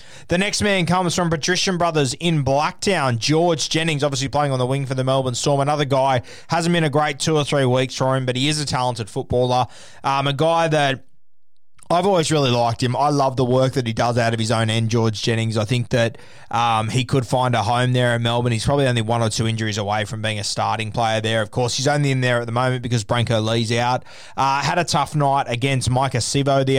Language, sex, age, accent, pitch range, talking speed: English, male, 20-39, Australian, 120-155 Hz, 245 wpm